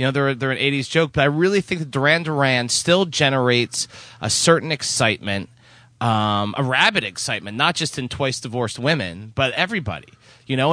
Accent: American